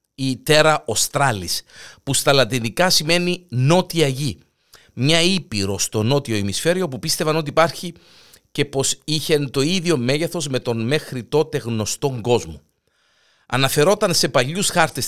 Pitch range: 115-170 Hz